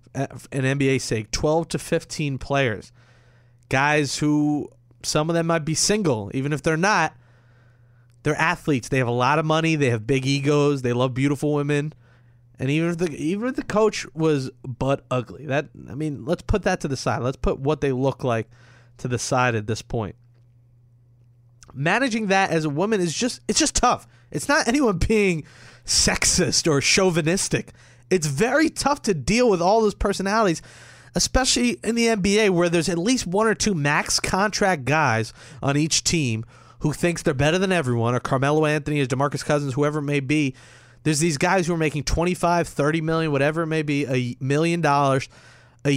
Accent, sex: American, male